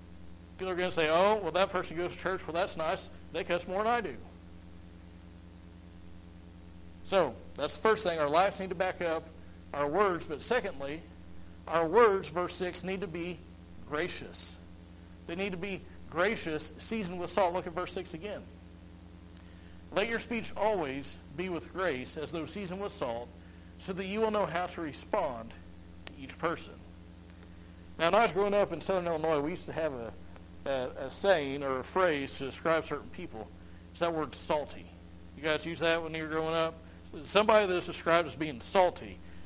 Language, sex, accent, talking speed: English, male, American, 185 wpm